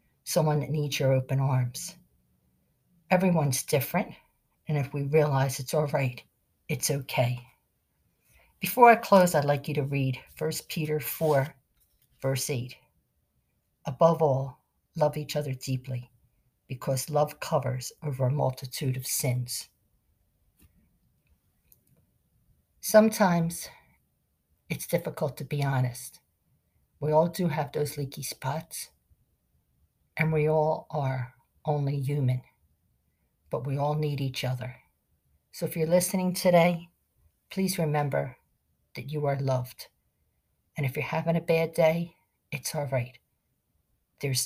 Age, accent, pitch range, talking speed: 50-69, American, 130-155 Hz, 125 wpm